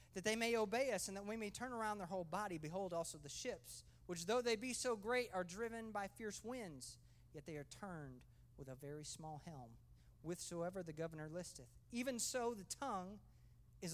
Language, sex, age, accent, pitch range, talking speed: English, male, 40-59, American, 145-210 Hz, 200 wpm